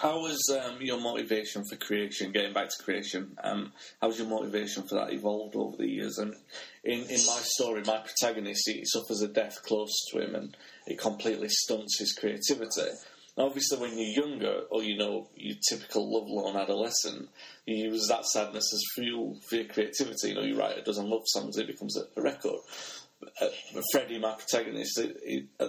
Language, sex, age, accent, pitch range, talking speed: English, male, 30-49, British, 105-120 Hz, 190 wpm